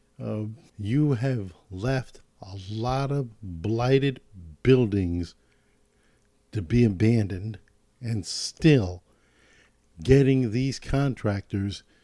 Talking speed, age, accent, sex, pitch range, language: 85 wpm, 50-69, American, male, 105-135 Hz, English